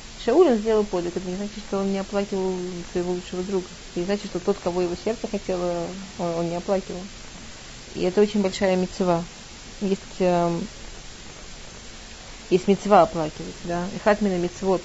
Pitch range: 165-195 Hz